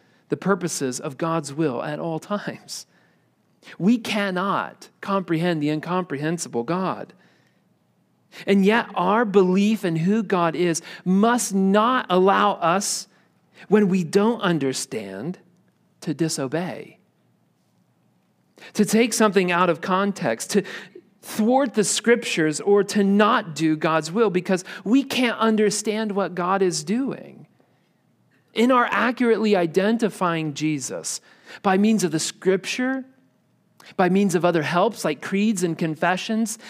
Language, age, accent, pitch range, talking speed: English, 40-59, American, 175-215 Hz, 125 wpm